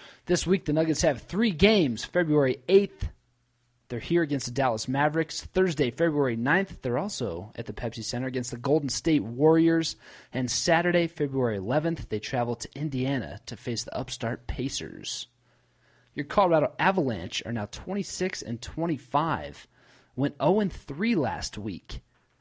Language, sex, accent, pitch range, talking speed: English, male, American, 120-165 Hz, 145 wpm